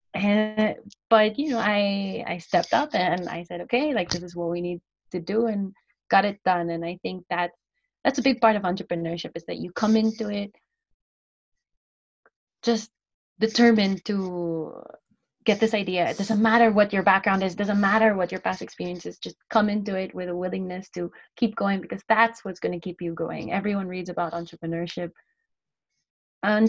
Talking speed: 185 wpm